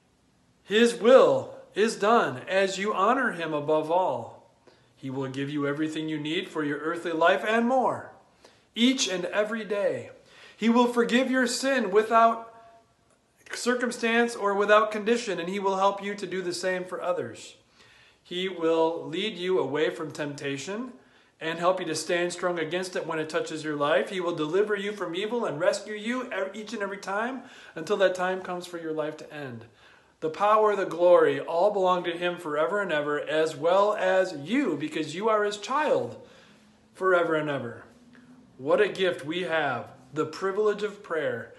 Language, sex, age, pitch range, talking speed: English, male, 40-59, 165-230 Hz, 175 wpm